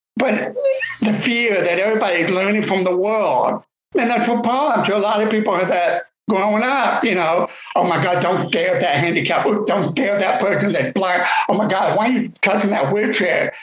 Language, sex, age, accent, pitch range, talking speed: English, male, 60-79, American, 180-235 Hz, 210 wpm